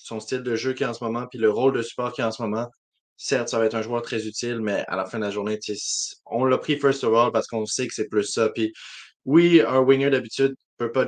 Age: 20-39